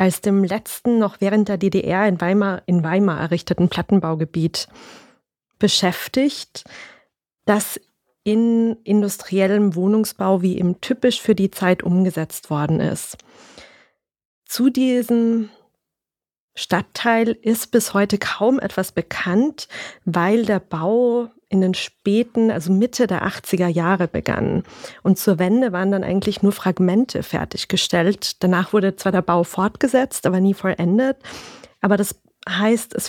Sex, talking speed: female, 125 wpm